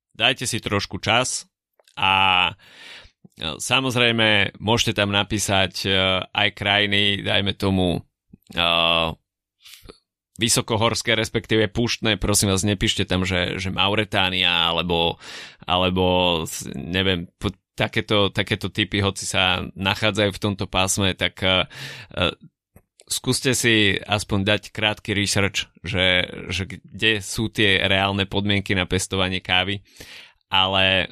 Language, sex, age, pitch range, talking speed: Slovak, male, 20-39, 90-105 Hz, 100 wpm